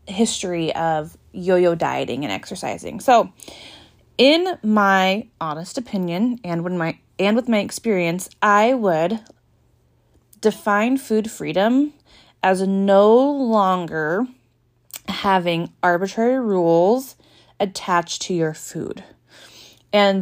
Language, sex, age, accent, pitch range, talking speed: English, female, 20-39, American, 170-220 Hz, 100 wpm